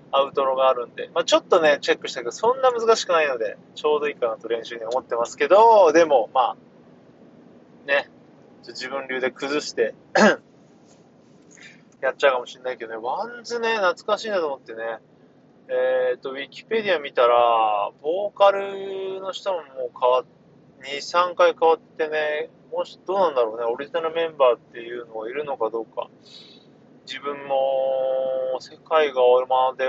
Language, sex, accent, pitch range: Japanese, male, native, 120-180 Hz